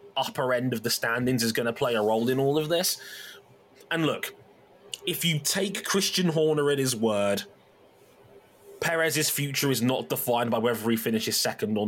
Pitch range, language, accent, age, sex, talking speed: 115-145 Hz, English, British, 20-39, male, 180 wpm